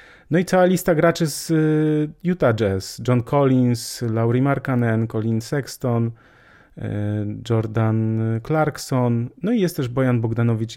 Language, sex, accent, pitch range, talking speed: Polish, male, native, 110-130 Hz, 125 wpm